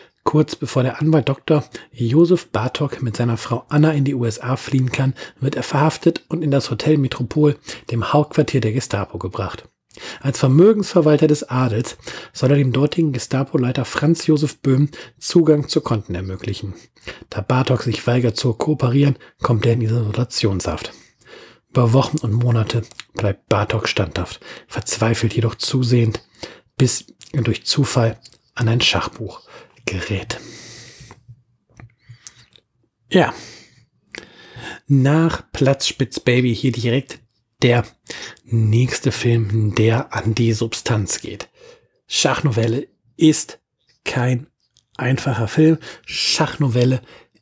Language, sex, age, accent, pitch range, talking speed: German, male, 40-59, German, 115-140 Hz, 120 wpm